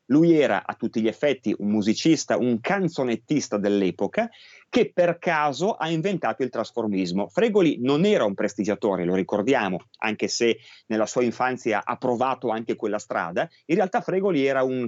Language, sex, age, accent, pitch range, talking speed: Italian, male, 30-49, native, 110-155 Hz, 160 wpm